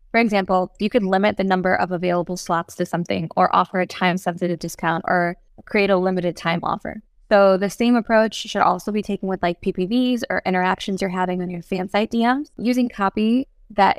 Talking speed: 200 wpm